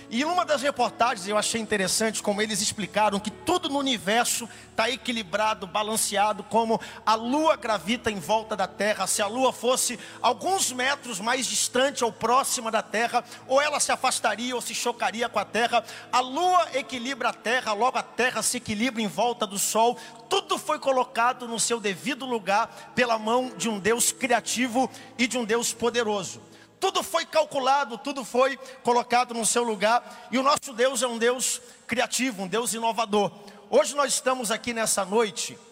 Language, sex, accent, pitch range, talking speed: Portuguese, male, Brazilian, 215-255 Hz, 180 wpm